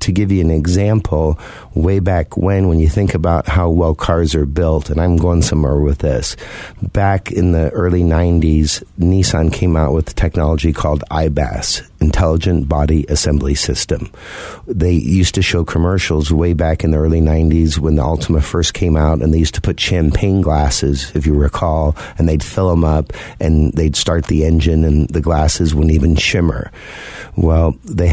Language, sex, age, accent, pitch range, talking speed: English, male, 50-69, American, 80-90 Hz, 180 wpm